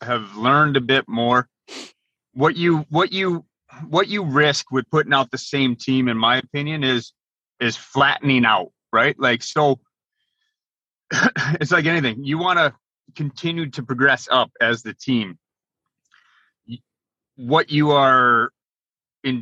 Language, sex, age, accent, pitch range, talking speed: English, male, 30-49, American, 120-150 Hz, 140 wpm